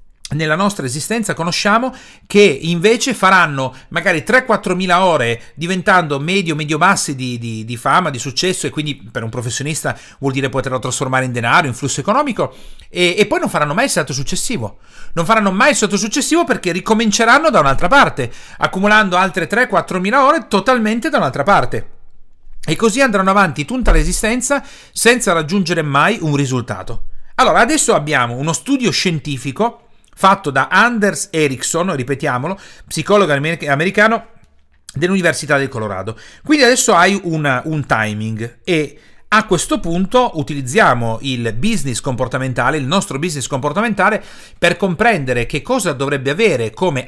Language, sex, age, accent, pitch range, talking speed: Italian, male, 40-59, native, 135-205 Hz, 145 wpm